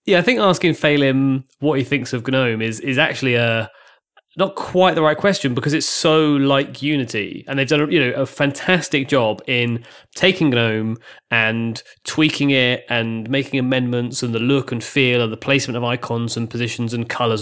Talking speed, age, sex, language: 195 wpm, 30-49, male, English